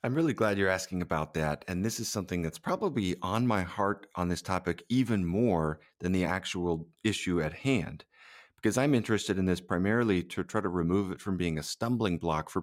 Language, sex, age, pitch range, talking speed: English, male, 40-59, 90-115 Hz, 210 wpm